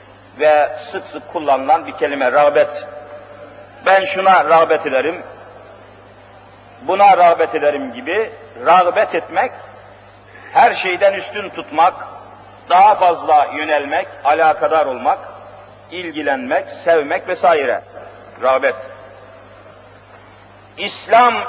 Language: Turkish